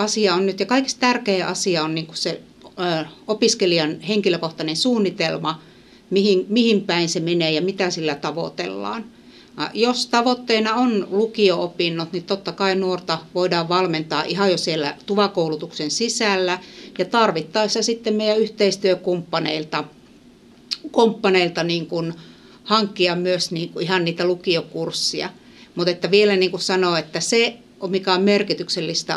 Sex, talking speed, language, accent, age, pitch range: female, 130 wpm, Finnish, native, 60-79, 170-210 Hz